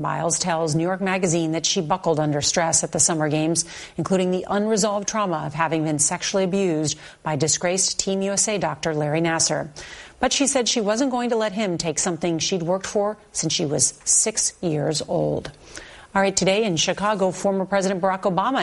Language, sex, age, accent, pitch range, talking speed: English, female, 40-59, American, 165-210 Hz, 190 wpm